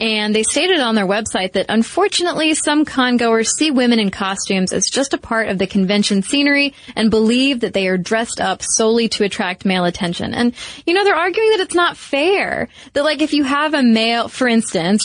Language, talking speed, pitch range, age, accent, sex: English, 205 wpm, 205-265 Hz, 20-39, American, female